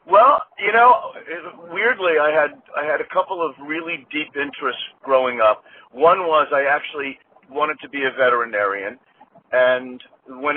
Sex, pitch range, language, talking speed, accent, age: male, 125-160 Hz, English, 155 wpm, American, 50-69